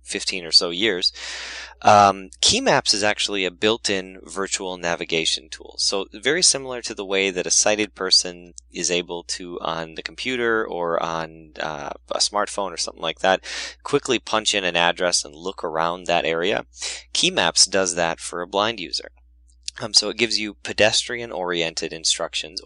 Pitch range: 85-105 Hz